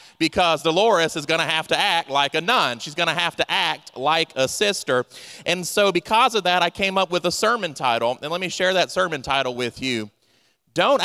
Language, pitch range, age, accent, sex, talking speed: English, 125-160 Hz, 30-49, American, male, 215 wpm